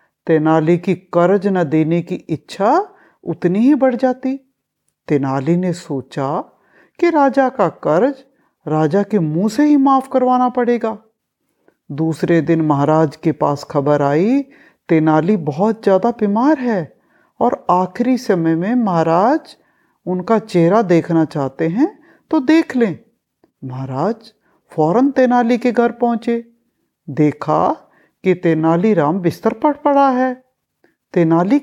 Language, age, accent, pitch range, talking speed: Hindi, 50-69, native, 165-270 Hz, 125 wpm